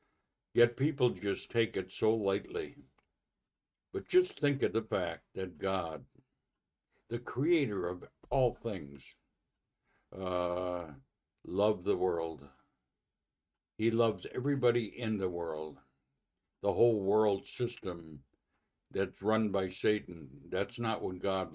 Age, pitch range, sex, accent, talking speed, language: 60-79, 90-110 Hz, male, American, 115 wpm, English